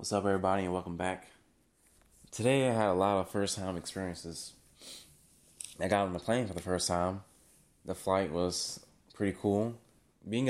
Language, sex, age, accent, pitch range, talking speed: English, male, 20-39, American, 85-100 Hz, 165 wpm